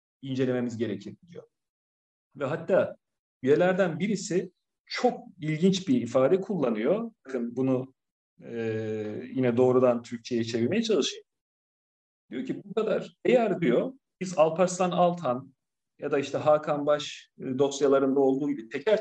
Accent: native